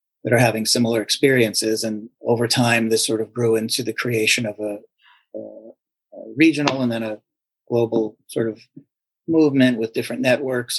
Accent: American